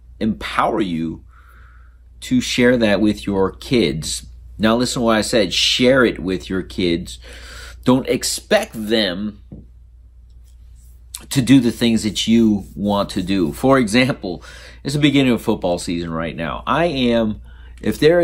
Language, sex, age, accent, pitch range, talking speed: English, male, 40-59, American, 85-110 Hz, 150 wpm